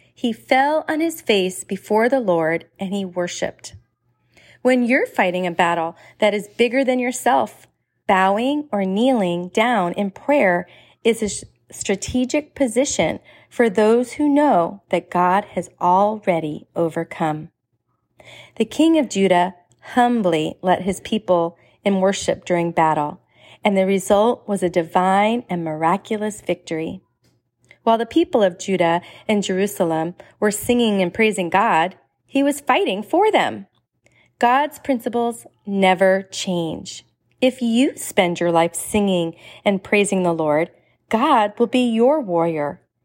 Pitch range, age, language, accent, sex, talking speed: 175-230 Hz, 40-59, English, American, female, 135 wpm